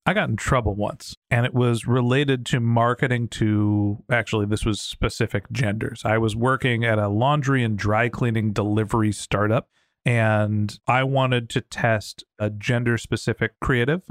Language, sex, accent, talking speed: English, male, American, 155 wpm